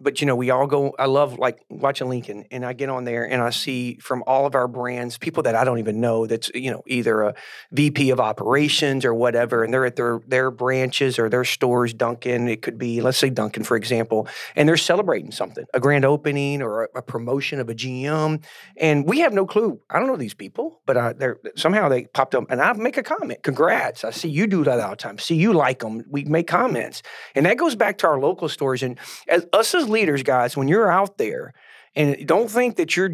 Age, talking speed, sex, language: 40-59, 235 wpm, male, English